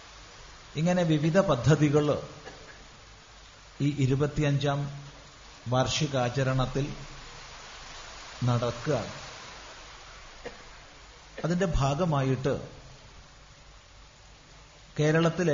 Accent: native